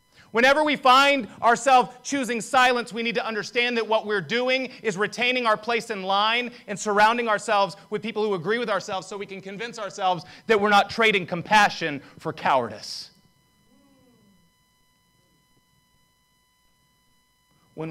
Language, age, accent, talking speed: English, 30-49, American, 140 wpm